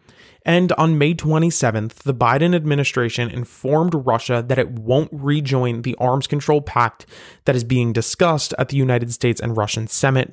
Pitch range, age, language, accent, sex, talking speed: 125-160 Hz, 20-39, English, American, male, 165 wpm